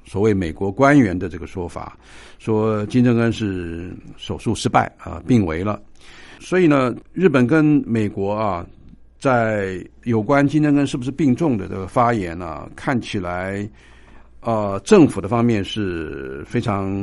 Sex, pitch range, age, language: male, 95-125 Hz, 60-79, Chinese